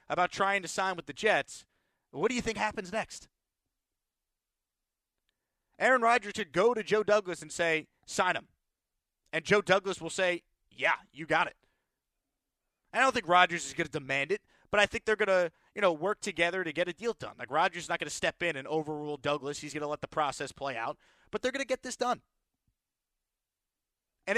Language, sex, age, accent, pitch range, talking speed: English, male, 30-49, American, 155-215 Hz, 205 wpm